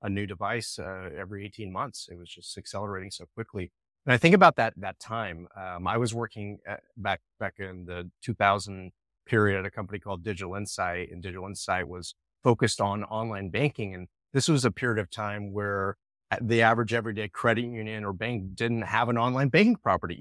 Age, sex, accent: 30-49, male, American